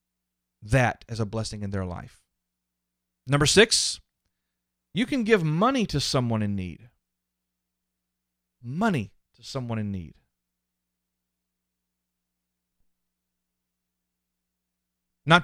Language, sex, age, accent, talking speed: English, male, 40-59, American, 90 wpm